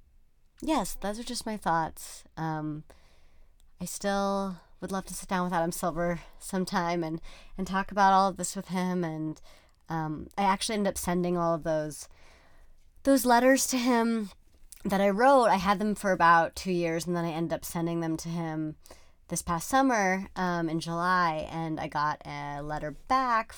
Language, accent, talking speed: English, American, 185 wpm